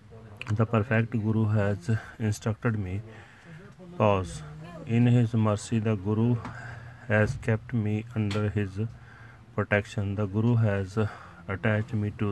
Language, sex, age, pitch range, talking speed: Punjabi, male, 30-49, 105-120 Hz, 115 wpm